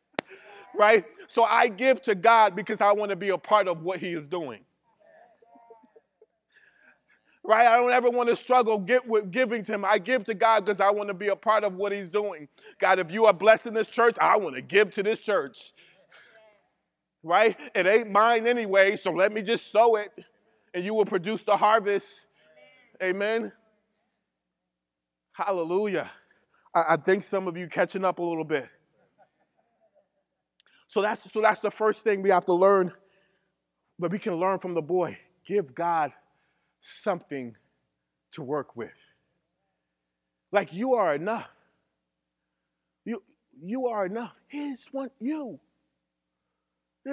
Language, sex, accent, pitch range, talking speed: English, male, American, 170-225 Hz, 160 wpm